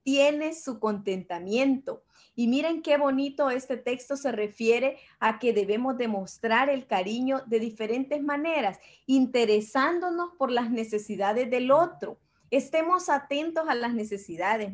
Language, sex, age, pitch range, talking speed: Spanish, female, 30-49, 225-285 Hz, 125 wpm